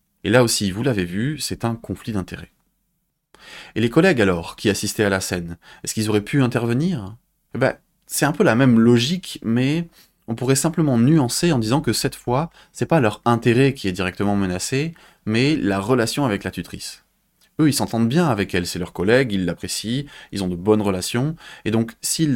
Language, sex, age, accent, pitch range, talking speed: French, male, 20-39, French, 100-135 Hz, 200 wpm